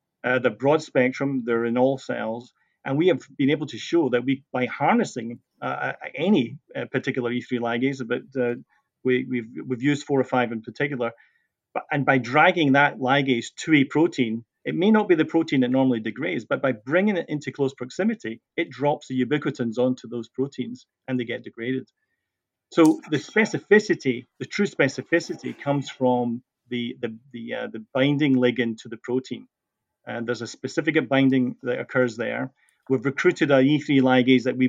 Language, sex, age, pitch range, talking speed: English, male, 40-59, 125-145 Hz, 180 wpm